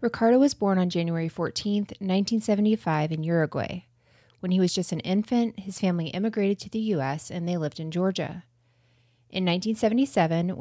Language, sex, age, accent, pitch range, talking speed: English, female, 20-39, American, 145-190 Hz, 160 wpm